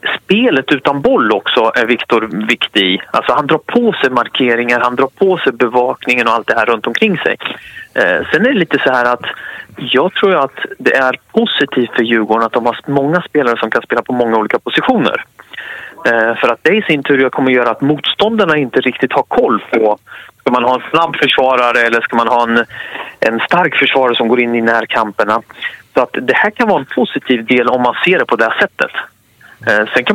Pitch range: 120-155 Hz